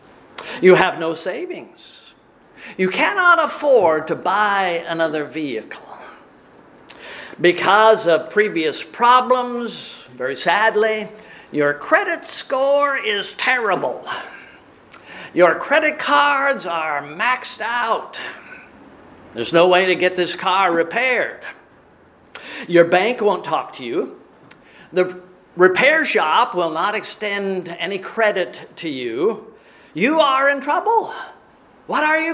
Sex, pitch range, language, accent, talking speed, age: male, 175-280 Hz, English, American, 110 wpm, 50-69